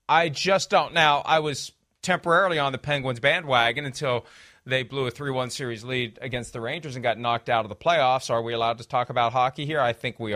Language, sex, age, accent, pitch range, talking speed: English, male, 40-59, American, 135-190 Hz, 225 wpm